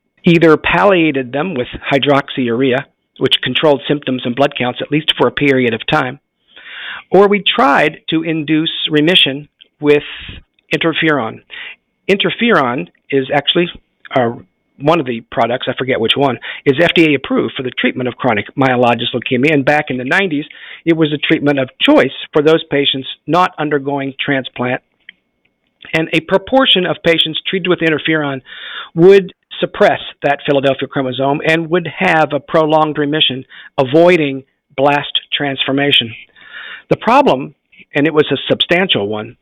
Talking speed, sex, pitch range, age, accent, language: 145 wpm, male, 135-160 Hz, 50-69, American, English